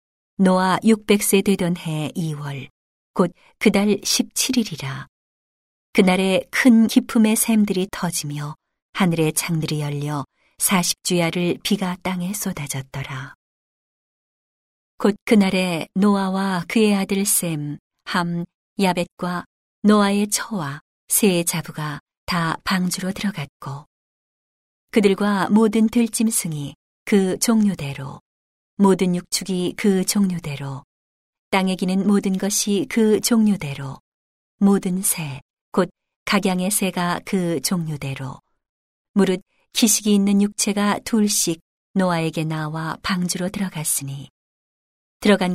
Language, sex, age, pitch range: Korean, female, 40-59, 160-205 Hz